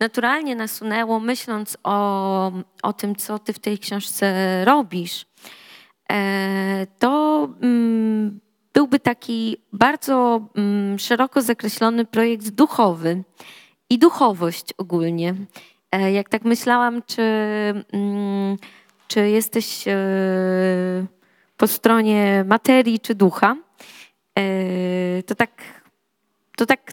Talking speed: 85 wpm